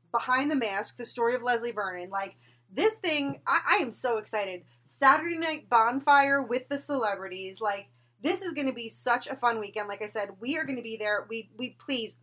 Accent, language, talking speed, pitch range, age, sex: American, English, 215 wpm, 210-265 Hz, 20-39, female